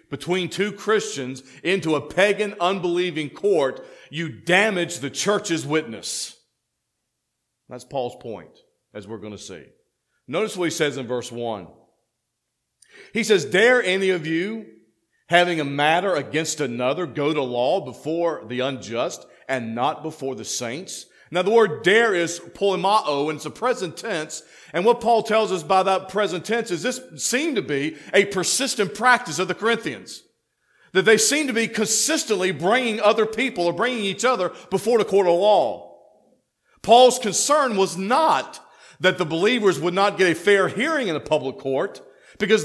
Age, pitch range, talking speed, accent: 50-69, 155-230 Hz, 165 wpm, American